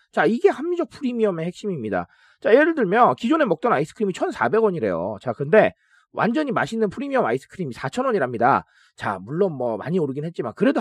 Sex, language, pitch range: male, Korean, 180-260 Hz